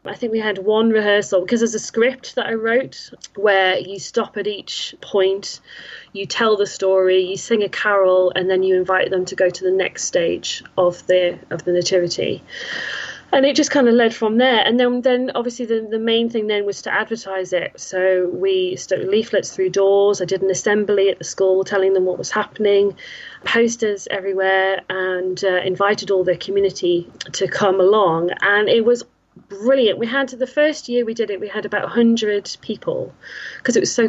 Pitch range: 185-225 Hz